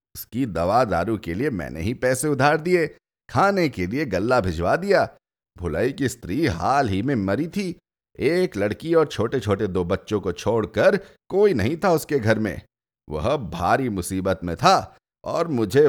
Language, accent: Hindi, native